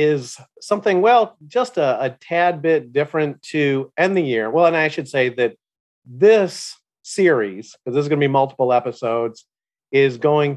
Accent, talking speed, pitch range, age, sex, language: American, 175 wpm, 130-165 Hz, 40-59, male, English